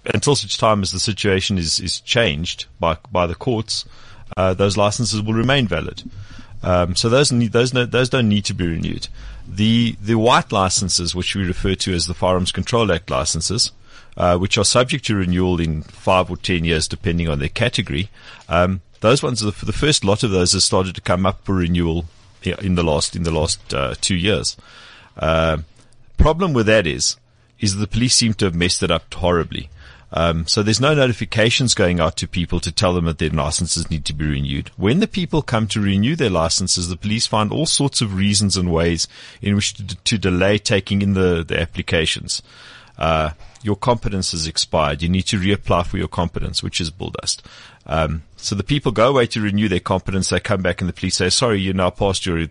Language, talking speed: English, 210 wpm